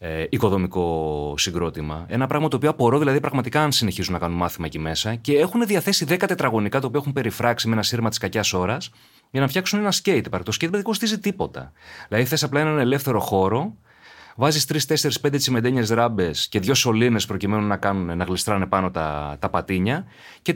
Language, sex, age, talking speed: Greek, male, 30-49, 195 wpm